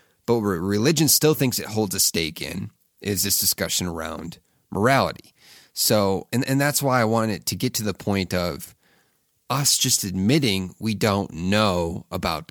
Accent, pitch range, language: American, 95-125 Hz, English